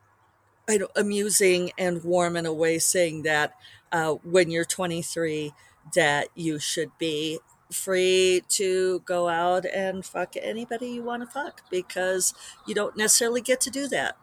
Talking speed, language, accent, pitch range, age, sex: 150 wpm, English, American, 140-190 Hz, 50-69, female